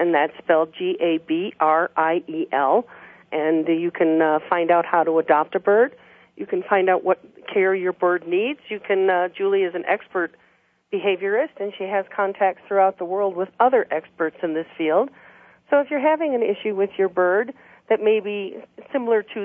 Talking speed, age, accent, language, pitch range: 180 wpm, 40-59, American, English, 175-230 Hz